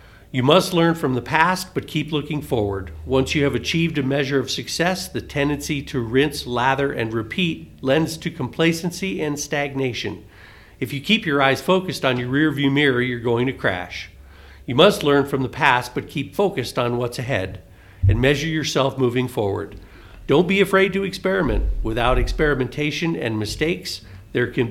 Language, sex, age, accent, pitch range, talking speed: English, male, 50-69, American, 115-155 Hz, 175 wpm